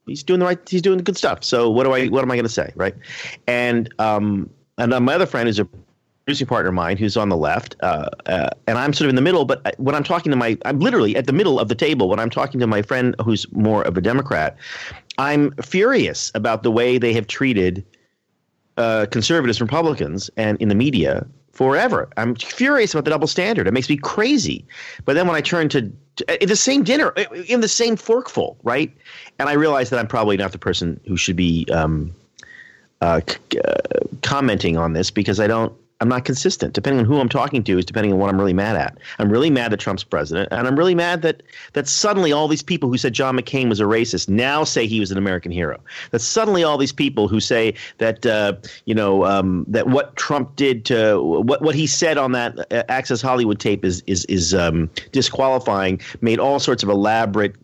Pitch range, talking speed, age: 105-145 Hz, 225 wpm, 40-59